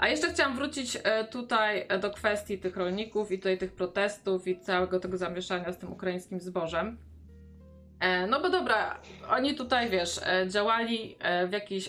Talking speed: 150 wpm